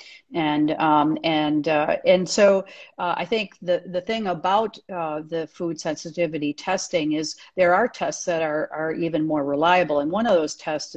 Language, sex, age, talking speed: English, female, 50-69, 180 wpm